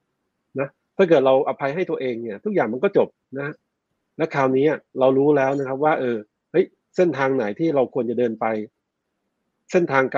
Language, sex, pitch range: Thai, male, 125-165 Hz